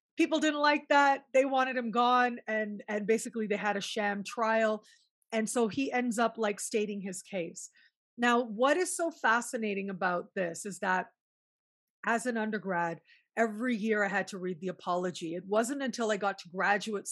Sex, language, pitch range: female, English, 200-250 Hz